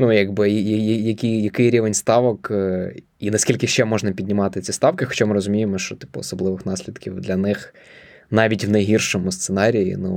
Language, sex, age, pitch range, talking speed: Ukrainian, male, 20-39, 100-120 Hz, 160 wpm